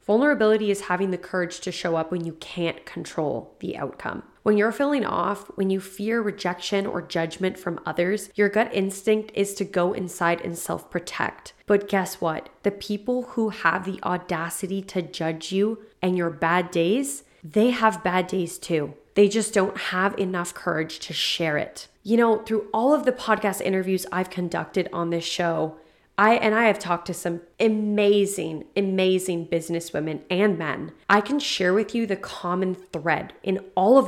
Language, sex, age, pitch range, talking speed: English, female, 20-39, 180-230 Hz, 180 wpm